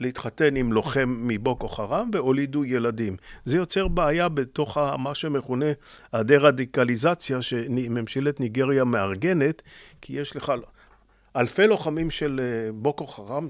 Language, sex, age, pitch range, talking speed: Hebrew, male, 40-59, 115-150 Hz, 115 wpm